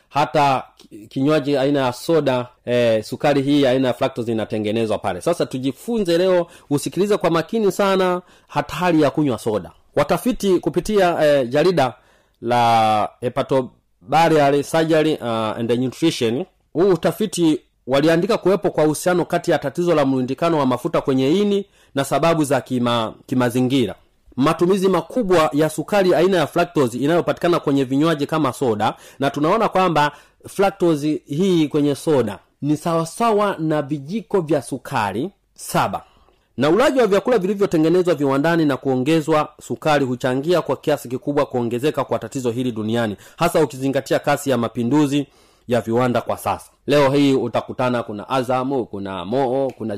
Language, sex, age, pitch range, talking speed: Swahili, male, 30-49, 125-170 Hz, 140 wpm